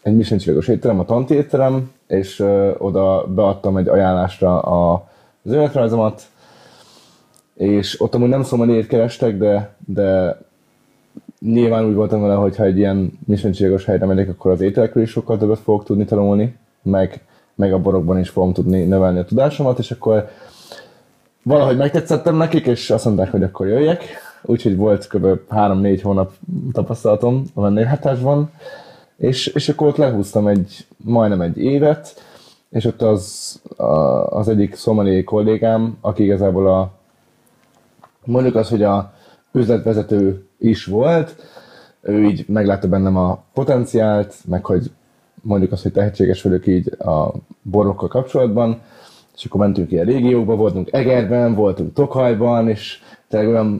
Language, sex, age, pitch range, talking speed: Hungarian, male, 20-39, 95-120 Hz, 145 wpm